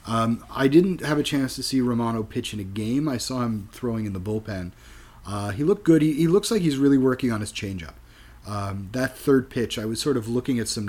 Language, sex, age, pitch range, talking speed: English, male, 30-49, 100-125 Hz, 250 wpm